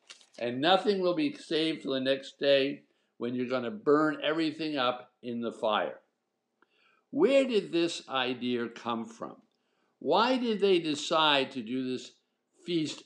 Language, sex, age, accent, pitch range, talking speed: English, male, 60-79, American, 125-160 Hz, 145 wpm